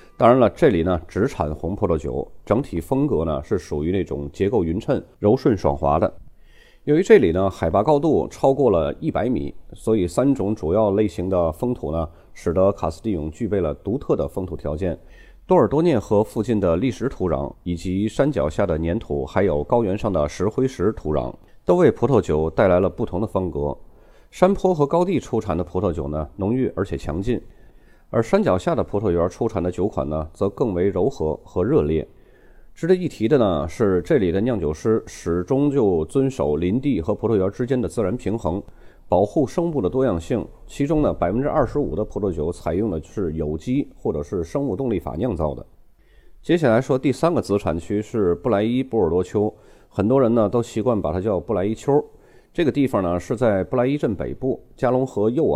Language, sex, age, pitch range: Chinese, male, 30-49, 85-125 Hz